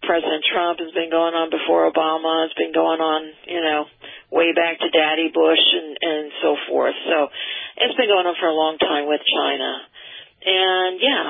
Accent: American